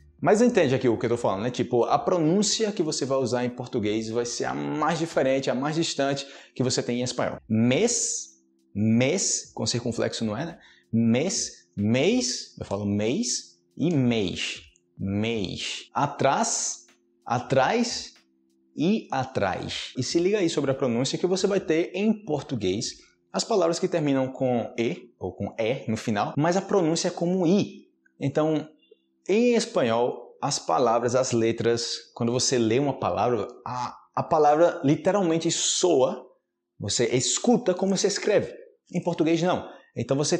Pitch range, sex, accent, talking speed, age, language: 110-165 Hz, male, Brazilian, 160 wpm, 20-39, Portuguese